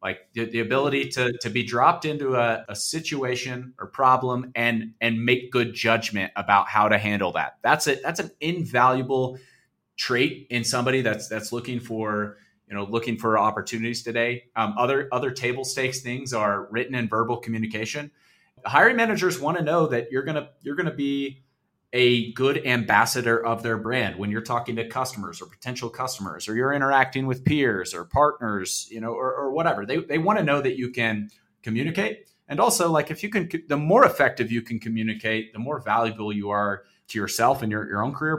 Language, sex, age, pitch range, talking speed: English, male, 30-49, 110-135 Hz, 190 wpm